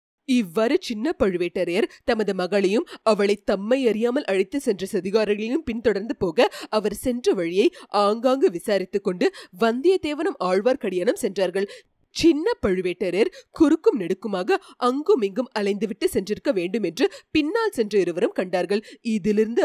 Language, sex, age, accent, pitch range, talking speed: Tamil, female, 30-49, native, 195-295 Hz, 115 wpm